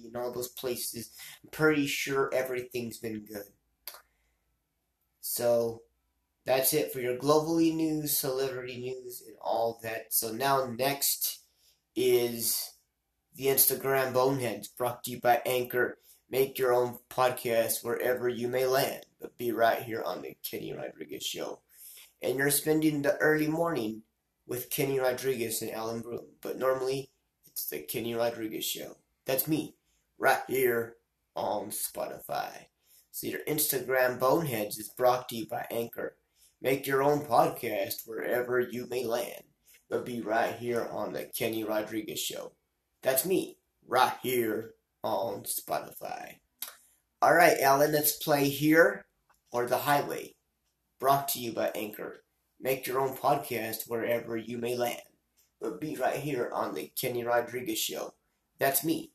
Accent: American